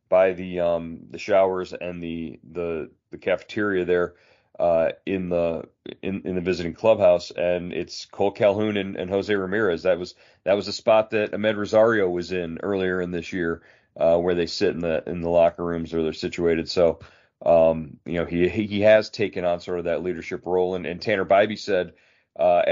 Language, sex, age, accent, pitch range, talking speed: English, male, 40-59, American, 90-105 Hz, 200 wpm